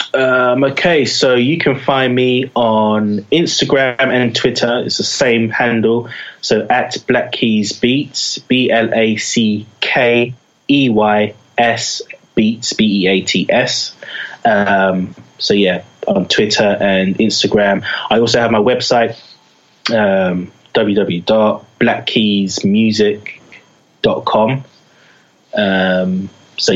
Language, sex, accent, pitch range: English, male, British, 100-125 Hz